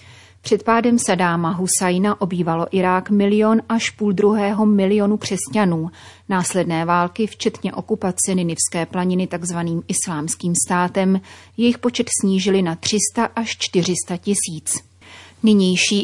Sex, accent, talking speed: female, native, 110 wpm